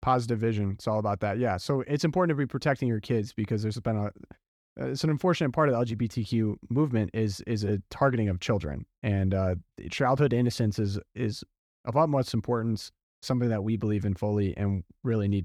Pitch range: 100-130 Hz